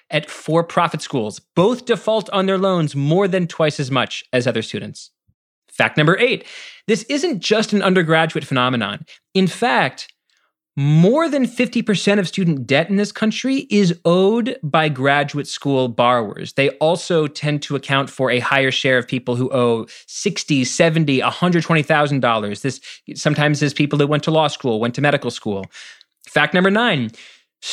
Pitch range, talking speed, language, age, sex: 135-190 Hz, 165 wpm, English, 30-49, male